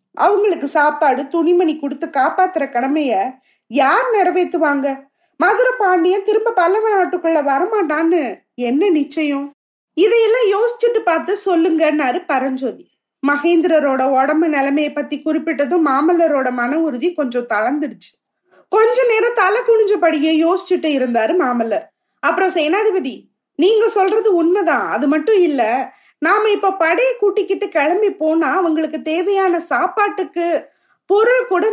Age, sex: 20-39, female